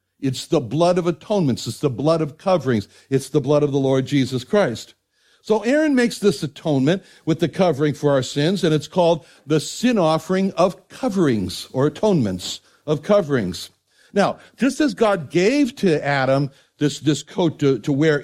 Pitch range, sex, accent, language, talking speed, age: 140-195 Hz, male, American, English, 180 wpm, 60-79